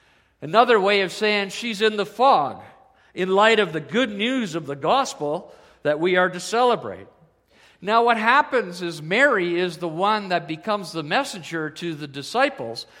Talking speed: 170 wpm